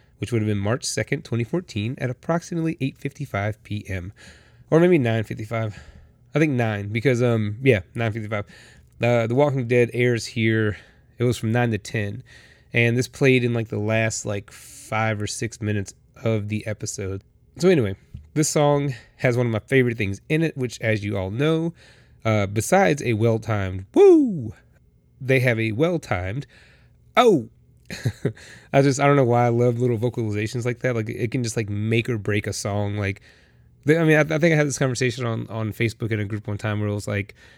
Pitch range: 110-140 Hz